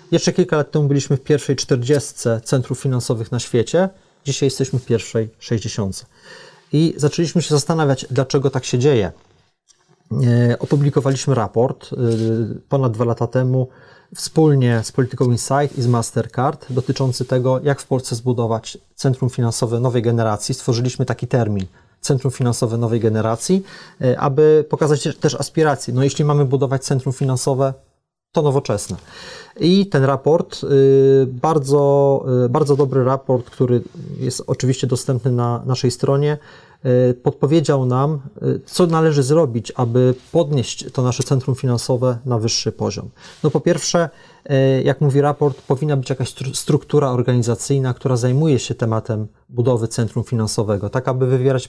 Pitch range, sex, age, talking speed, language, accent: 120-145 Hz, male, 30-49, 135 wpm, Polish, native